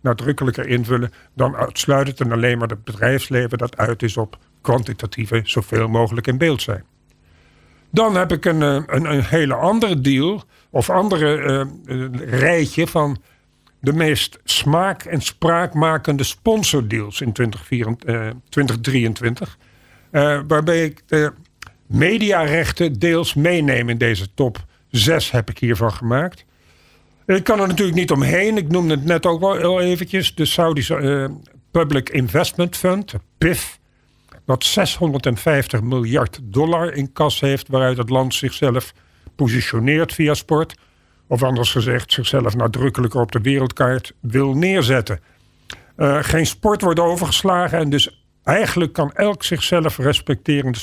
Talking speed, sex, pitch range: 140 wpm, male, 120-160 Hz